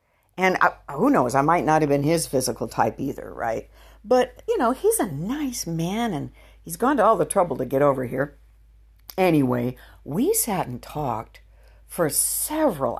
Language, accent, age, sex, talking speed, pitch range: English, American, 60-79, female, 175 wpm, 125-180 Hz